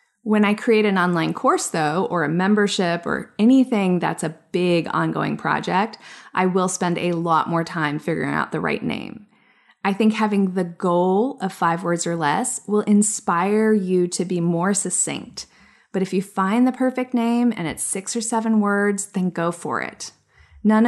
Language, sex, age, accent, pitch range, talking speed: English, female, 20-39, American, 175-215 Hz, 185 wpm